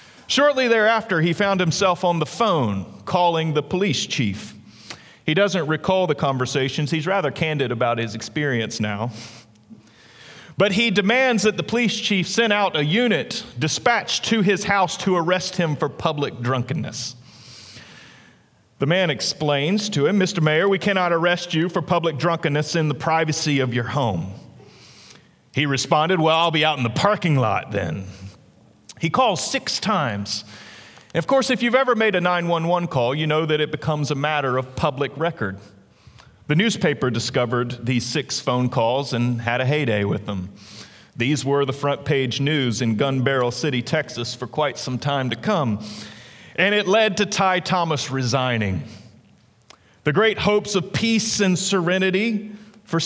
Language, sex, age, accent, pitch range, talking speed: English, male, 40-59, American, 125-185 Hz, 165 wpm